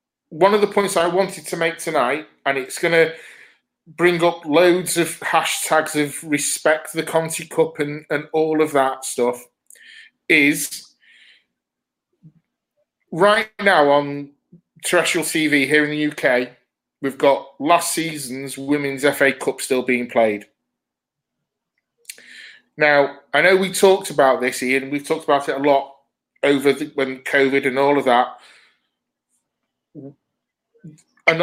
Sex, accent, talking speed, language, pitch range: male, British, 135 wpm, English, 140-180 Hz